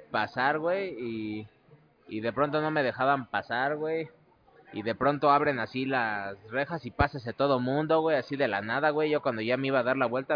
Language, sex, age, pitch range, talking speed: Spanish, male, 20-39, 115-150 Hz, 215 wpm